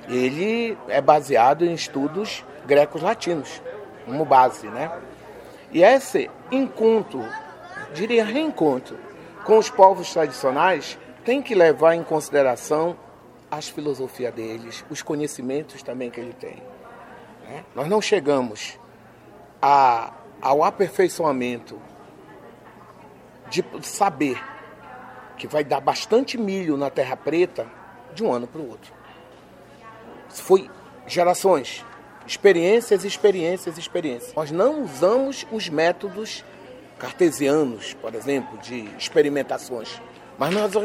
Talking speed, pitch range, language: 105 wpm, 150-225 Hz, Portuguese